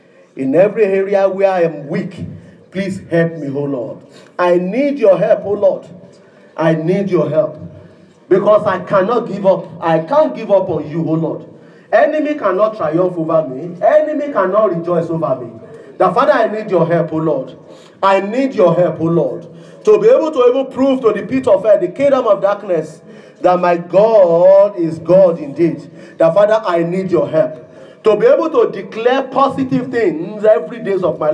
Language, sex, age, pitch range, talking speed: English, male, 40-59, 165-250 Hz, 185 wpm